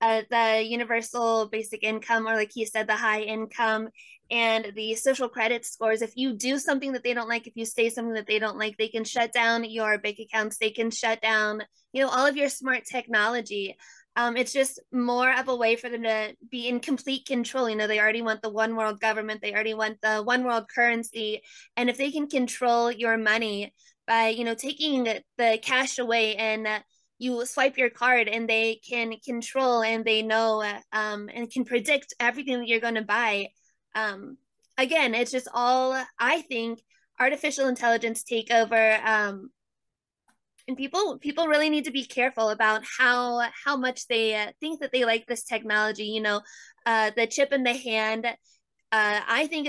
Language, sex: English, female